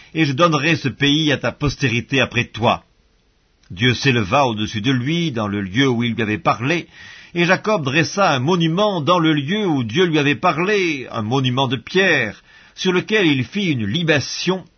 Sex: male